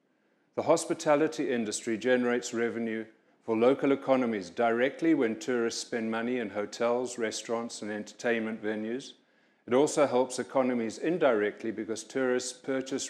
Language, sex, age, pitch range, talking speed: English, male, 40-59, 115-130 Hz, 125 wpm